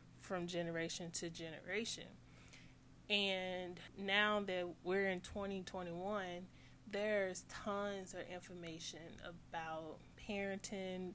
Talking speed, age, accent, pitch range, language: 85 wpm, 20-39, American, 165-195 Hz, English